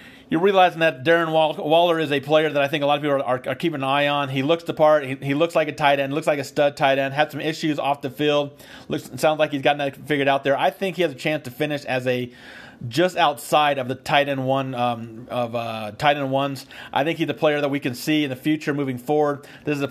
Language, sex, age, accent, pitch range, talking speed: English, male, 30-49, American, 130-150 Hz, 280 wpm